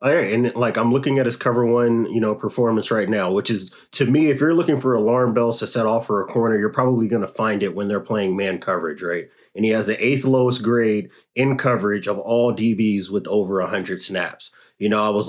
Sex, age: male, 30-49